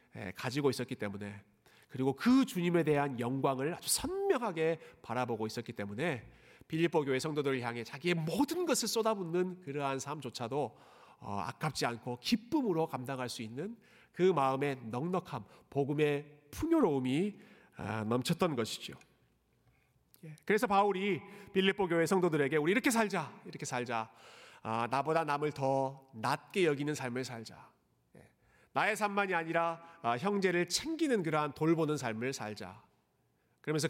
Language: Korean